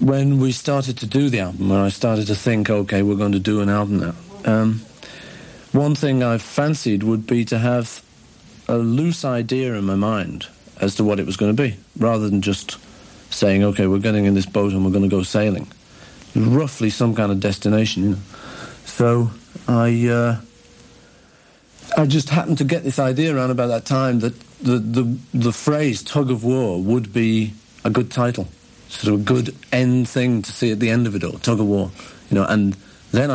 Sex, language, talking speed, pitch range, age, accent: male, English, 200 wpm, 100-130 Hz, 50-69, British